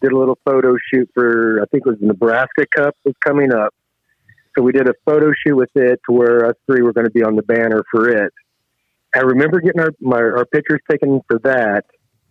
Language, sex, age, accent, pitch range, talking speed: English, male, 40-59, American, 115-140 Hz, 225 wpm